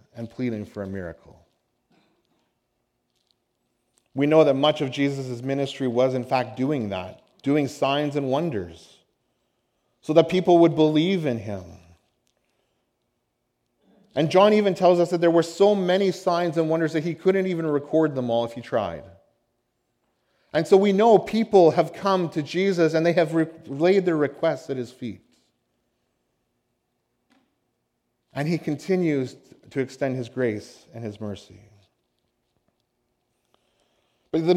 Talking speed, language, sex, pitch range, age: 140 wpm, English, male, 115-160 Hz, 30-49